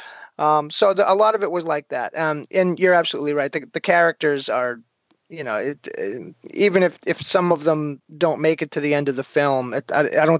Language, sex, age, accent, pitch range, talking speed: English, male, 30-49, American, 140-175 Hz, 240 wpm